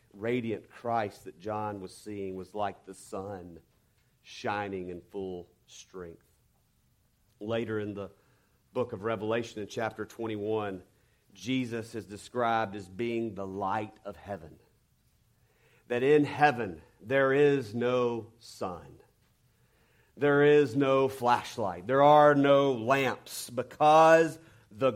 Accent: American